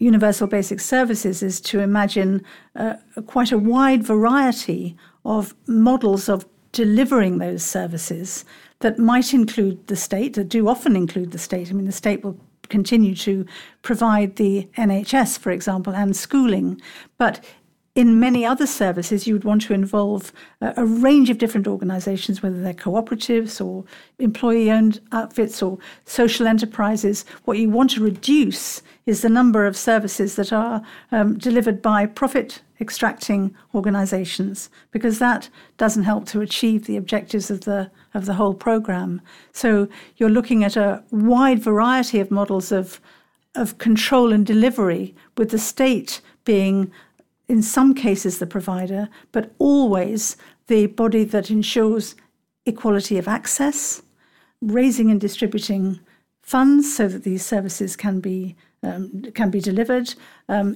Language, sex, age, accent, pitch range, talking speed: English, female, 50-69, British, 200-230 Hz, 145 wpm